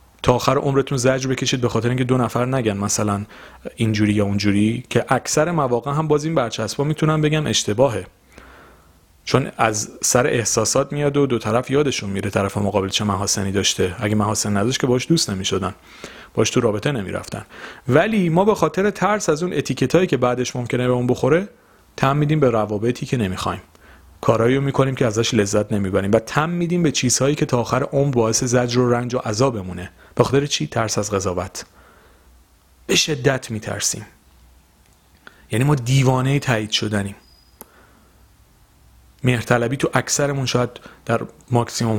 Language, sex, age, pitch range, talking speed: Persian, male, 40-59, 105-140 Hz, 160 wpm